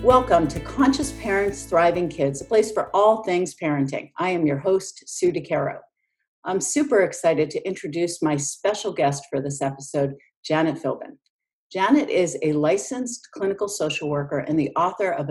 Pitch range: 150-205 Hz